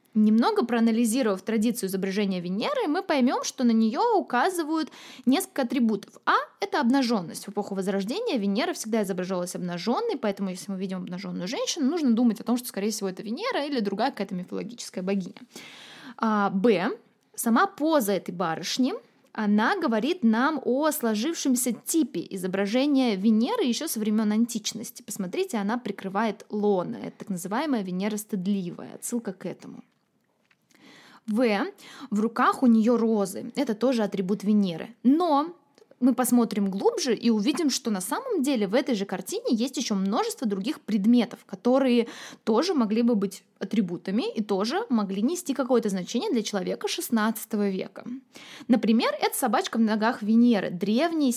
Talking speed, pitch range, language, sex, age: 150 wpm, 205-260 Hz, Russian, female, 20-39